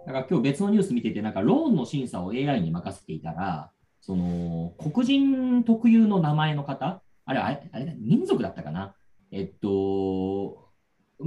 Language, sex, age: Japanese, male, 40-59